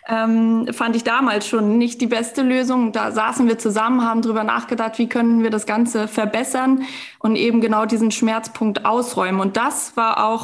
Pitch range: 210-235 Hz